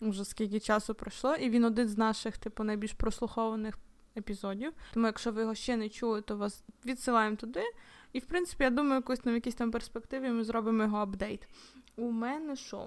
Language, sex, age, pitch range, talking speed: Ukrainian, female, 20-39, 215-245 Hz, 190 wpm